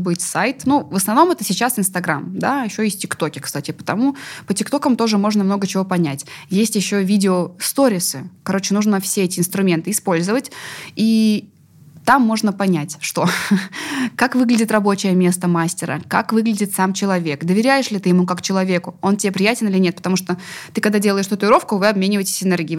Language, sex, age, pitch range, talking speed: Russian, female, 20-39, 175-210 Hz, 170 wpm